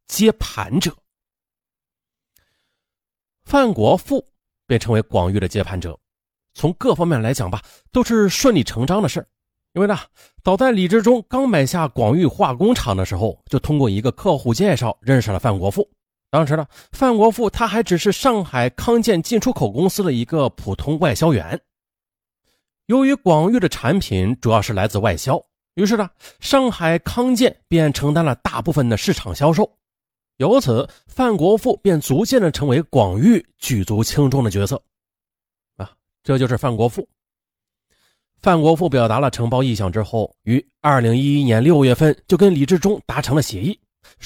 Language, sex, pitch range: Chinese, male, 115-190 Hz